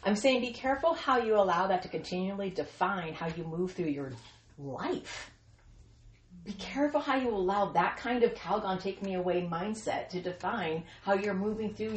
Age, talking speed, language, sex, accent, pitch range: 40-59, 180 wpm, English, female, American, 155-210 Hz